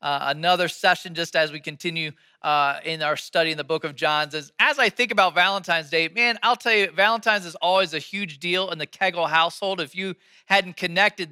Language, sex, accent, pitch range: English, male, American, 155-195 Hz